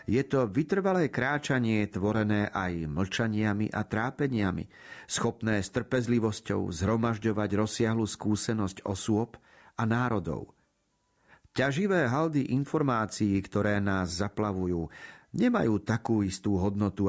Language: Slovak